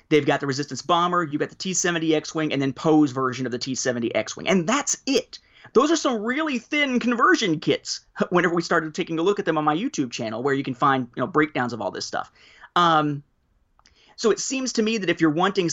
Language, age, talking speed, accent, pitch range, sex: English, 30-49, 235 wpm, American, 145-210 Hz, male